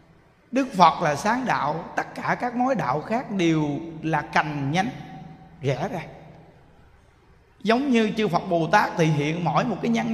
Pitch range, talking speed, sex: 160-220 Hz, 170 wpm, male